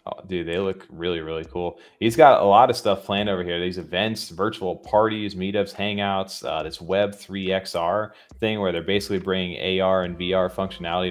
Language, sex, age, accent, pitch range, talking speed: English, male, 20-39, American, 85-95 Hz, 190 wpm